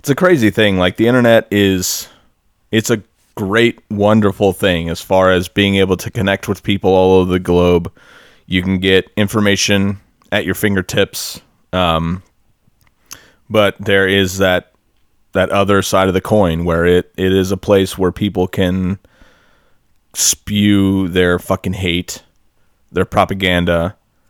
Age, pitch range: 30-49, 90-100 Hz